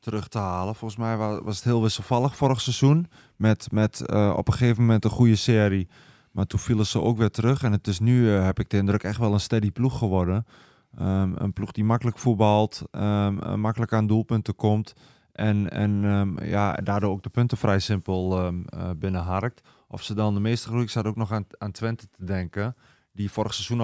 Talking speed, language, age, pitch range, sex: 195 wpm, Dutch, 20-39, 100-115 Hz, male